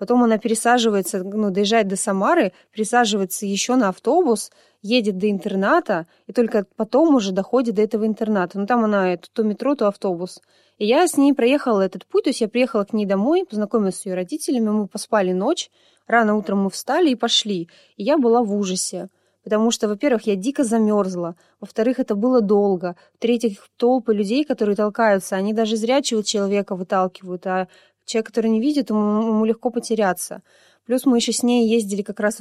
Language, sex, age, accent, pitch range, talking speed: Russian, female, 20-39, native, 200-240 Hz, 180 wpm